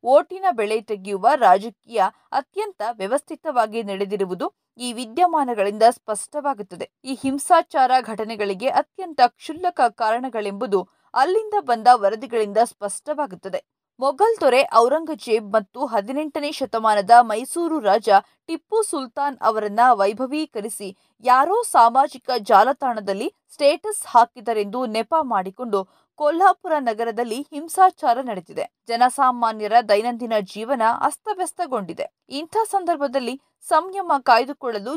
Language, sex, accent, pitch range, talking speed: Kannada, female, native, 220-295 Hz, 85 wpm